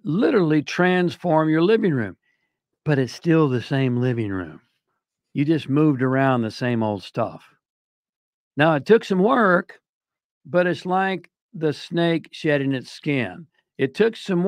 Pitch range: 120-160 Hz